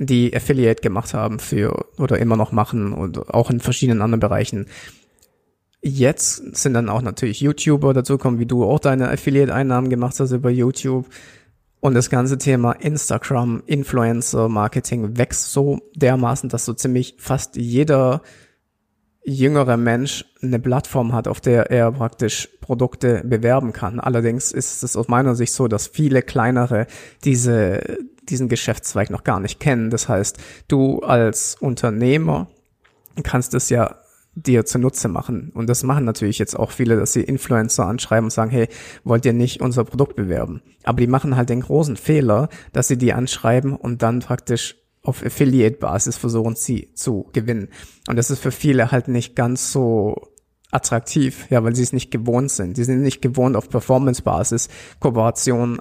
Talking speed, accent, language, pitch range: 165 wpm, German, German, 115-130 Hz